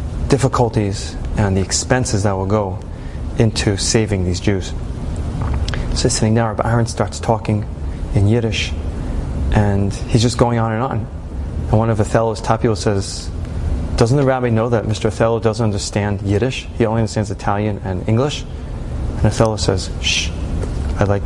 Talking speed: 160 wpm